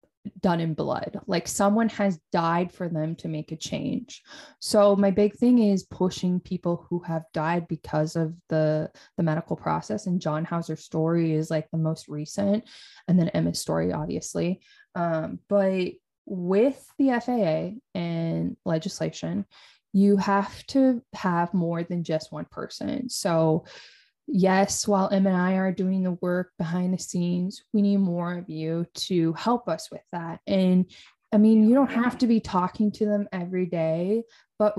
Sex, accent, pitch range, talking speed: female, American, 170-205 Hz, 165 wpm